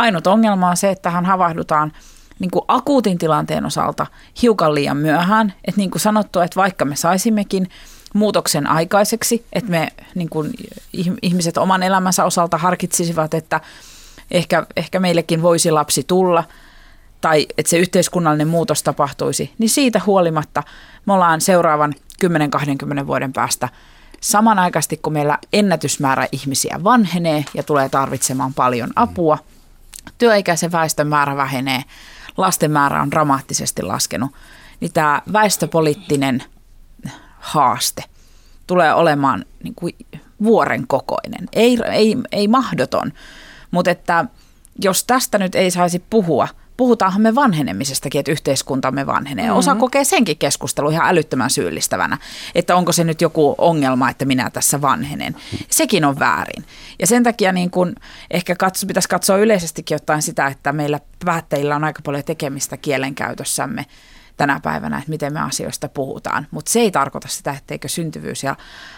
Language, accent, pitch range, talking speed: Finnish, native, 150-195 Hz, 130 wpm